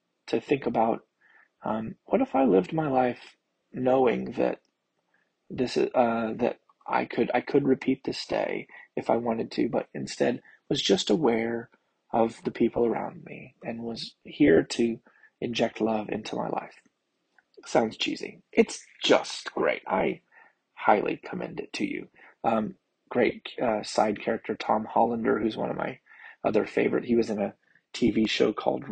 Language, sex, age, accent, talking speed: English, male, 20-39, American, 160 wpm